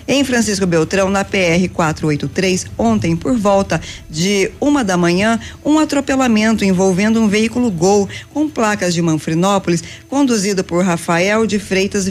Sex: female